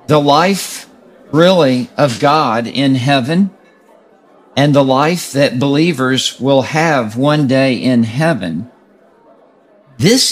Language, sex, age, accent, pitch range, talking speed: English, male, 50-69, American, 125-160 Hz, 110 wpm